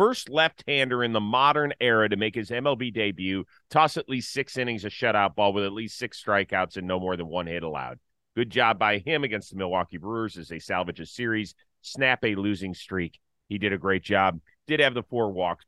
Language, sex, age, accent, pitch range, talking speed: English, male, 40-59, American, 100-145 Hz, 220 wpm